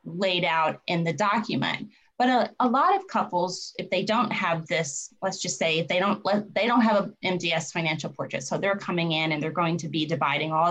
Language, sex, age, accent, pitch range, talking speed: English, female, 30-49, American, 170-230 Hz, 215 wpm